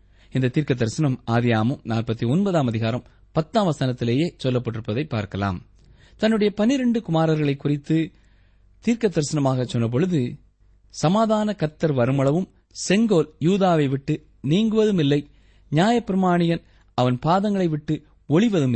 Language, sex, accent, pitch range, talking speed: Tamil, male, native, 110-170 Hz, 95 wpm